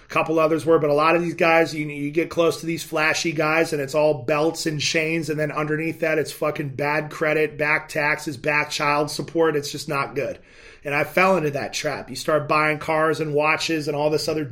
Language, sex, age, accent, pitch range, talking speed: English, male, 30-49, American, 150-170 Hz, 235 wpm